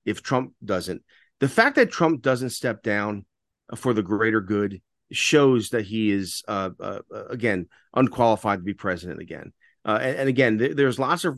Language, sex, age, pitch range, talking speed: English, male, 40-59, 110-130 Hz, 175 wpm